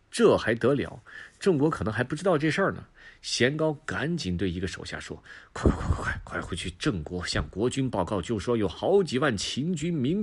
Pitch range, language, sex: 90-155 Hz, Chinese, male